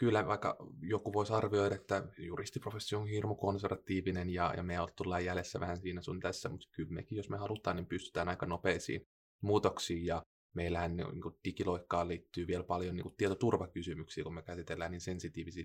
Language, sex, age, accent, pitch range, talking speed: Finnish, male, 20-39, native, 85-95 Hz, 175 wpm